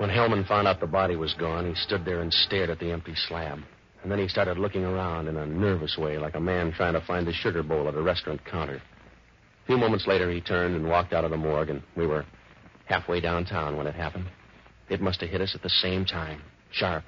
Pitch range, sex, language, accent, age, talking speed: 80-100 Hz, male, English, American, 50-69, 245 wpm